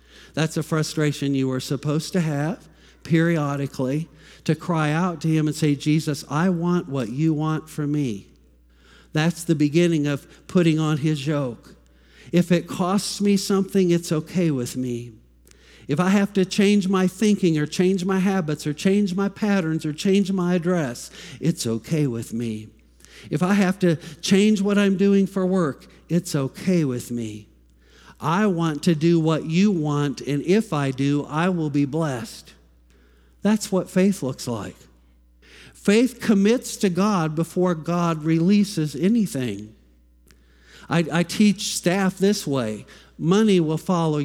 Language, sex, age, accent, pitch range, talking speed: English, male, 50-69, American, 130-180 Hz, 155 wpm